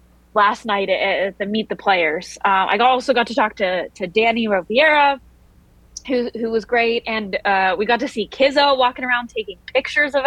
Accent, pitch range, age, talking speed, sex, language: American, 195-255 Hz, 20-39, 195 wpm, female, English